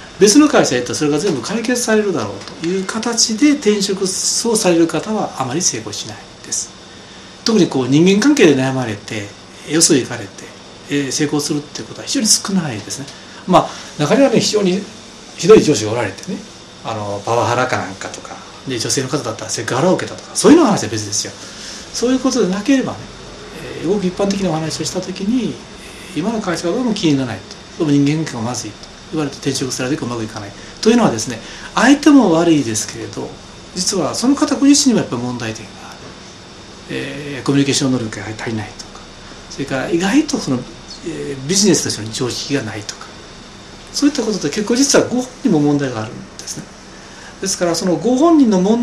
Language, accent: Japanese, native